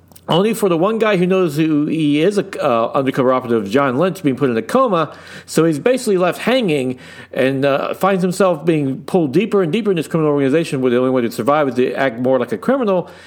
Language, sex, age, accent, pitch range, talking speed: English, male, 50-69, American, 120-160 Hz, 235 wpm